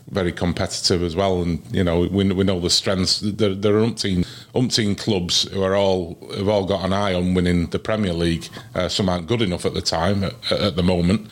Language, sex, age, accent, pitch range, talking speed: English, male, 30-49, British, 90-105 Hz, 230 wpm